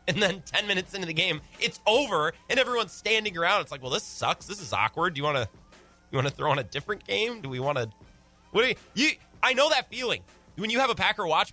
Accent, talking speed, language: American, 265 wpm, English